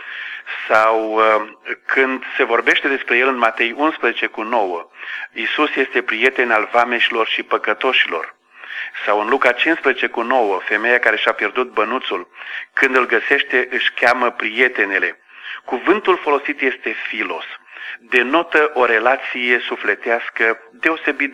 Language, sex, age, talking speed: Romanian, male, 40-59, 125 wpm